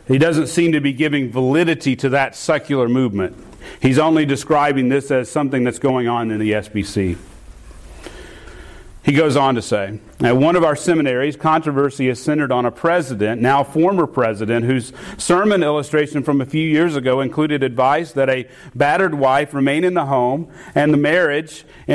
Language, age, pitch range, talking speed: English, 40-59, 125-160 Hz, 165 wpm